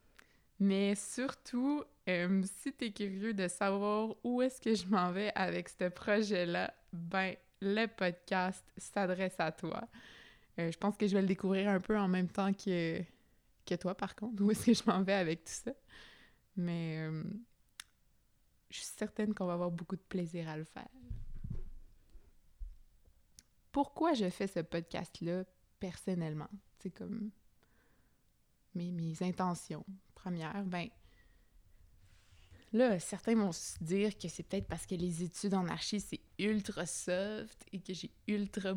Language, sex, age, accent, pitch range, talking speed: French, female, 20-39, Canadian, 170-205 Hz, 150 wpm